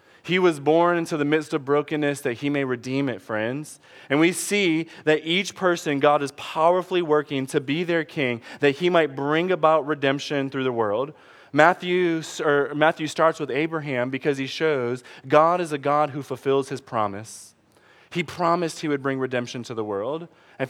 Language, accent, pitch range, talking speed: English, American, 140-170 Hz, 185 wpm